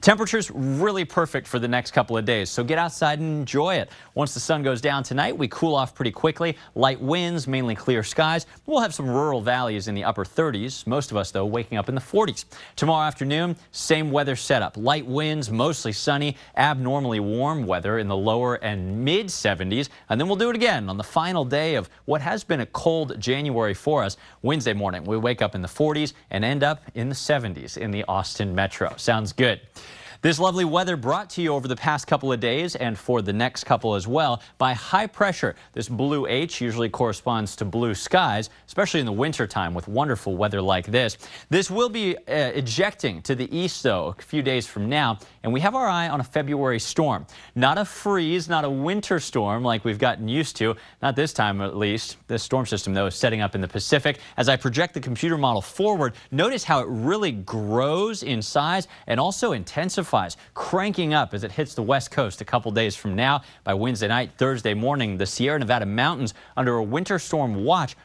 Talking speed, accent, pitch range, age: 210 wpm, American, 115-155 Hz, 30-49